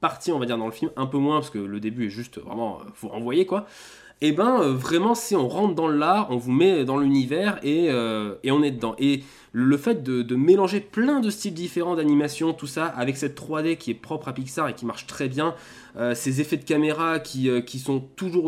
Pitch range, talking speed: 135-185 Hz, 255 wpm